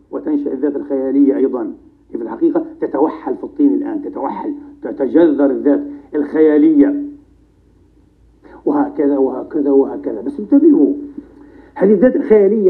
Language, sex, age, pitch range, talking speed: Arabic, male, 50-69, 250-320 Hz, 105 wpm